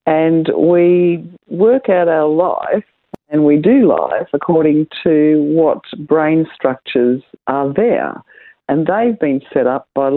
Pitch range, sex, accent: 130-185 Hz, female, Australian